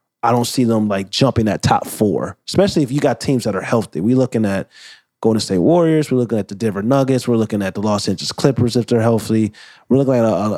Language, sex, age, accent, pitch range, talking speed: English, male, 20-39, American, 110-130 Hz, 245 wpm